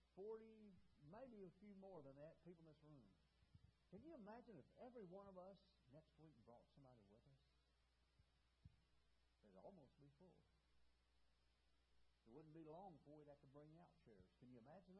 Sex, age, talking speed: male, 60-79, 170 wpm